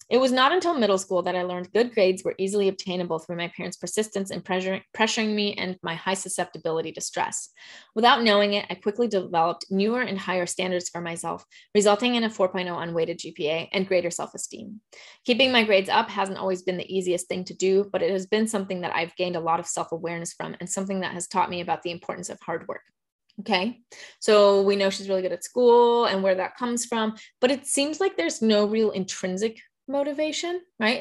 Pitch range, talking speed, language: 185-225 Hz, 210 wpm, English